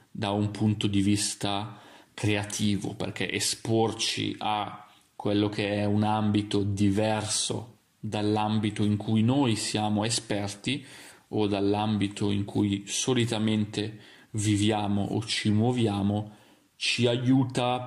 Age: 30-49